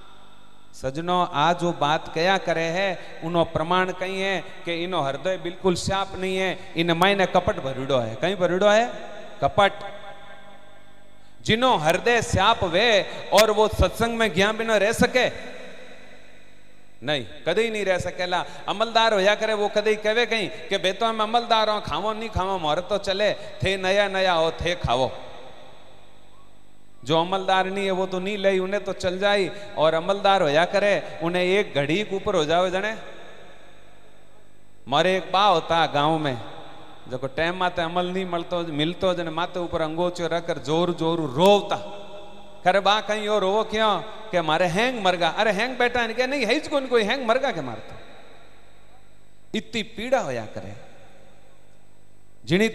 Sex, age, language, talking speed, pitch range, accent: male, 30-49, Hindi, 145 wpm, 165-205 Hz, native